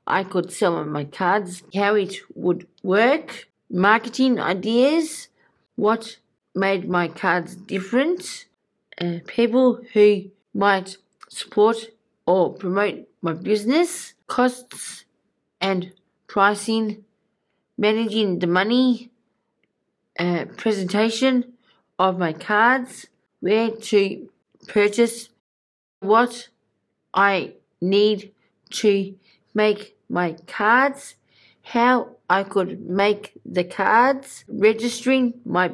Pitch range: 185-230 Hz